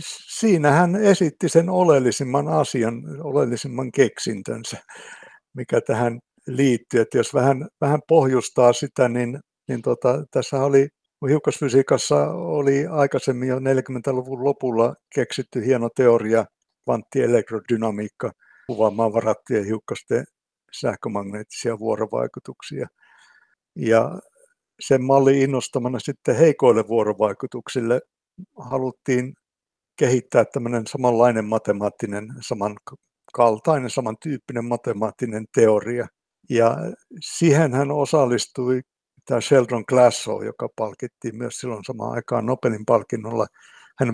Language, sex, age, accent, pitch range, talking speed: Finnish, male, 60-79, native, 115-140 Hz, 90 wpm